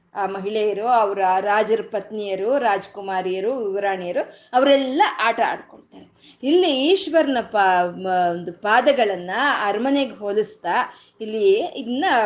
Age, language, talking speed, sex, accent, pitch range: 20-39, Kannada, 90 wpm, female, native, 210-320 Hz